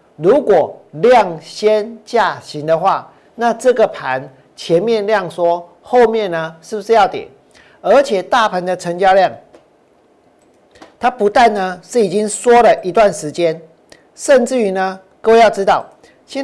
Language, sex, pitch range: Chinese, male, 175-235 Hz